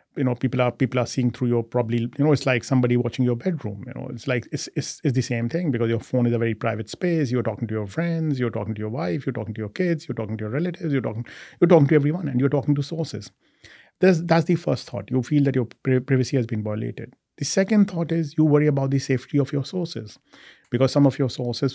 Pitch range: 120-145 Hz